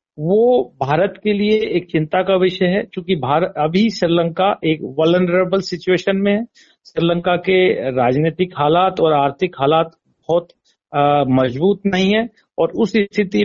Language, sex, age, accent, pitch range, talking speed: Hindi, male, 50-69, native, 150-195 Hz, 145 wpm